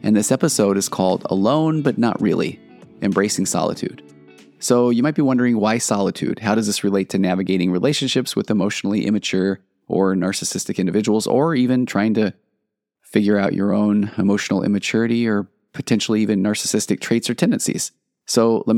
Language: English